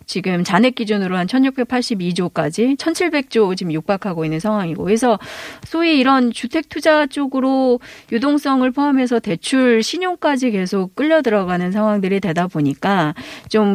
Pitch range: 195-270 Hz